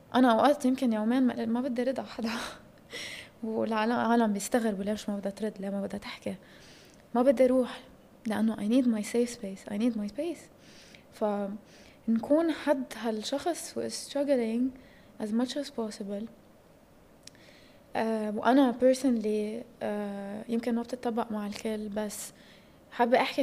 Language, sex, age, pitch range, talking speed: English, female, 20-39, 210-255 Hz, 80 wpm